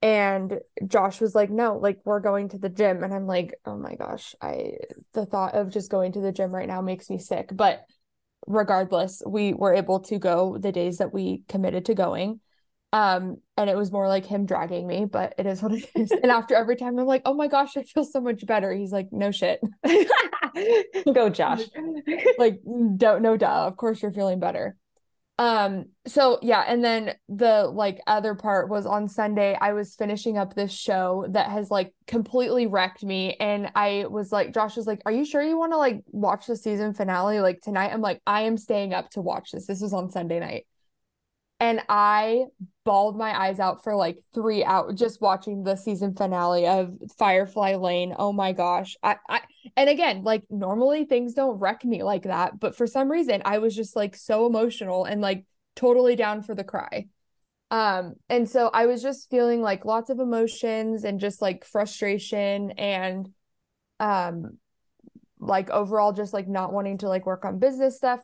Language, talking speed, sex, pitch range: English, 200 wpm, female, 195-230 Hz